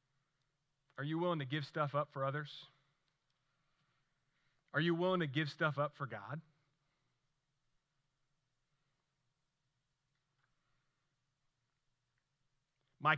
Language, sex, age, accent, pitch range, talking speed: English, male, 30-49, American, 135-155 Hz, 85 wpm